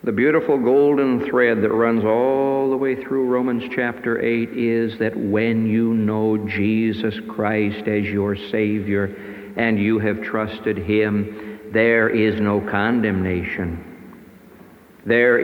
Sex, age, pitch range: male, 60-79, 105-135 Hz